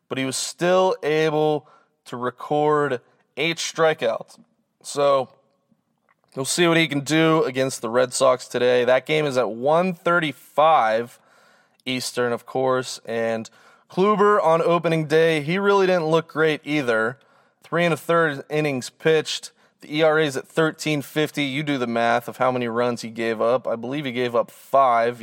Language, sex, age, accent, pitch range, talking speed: English, male, 20-39, American, 130-170 Hz, 160 wpm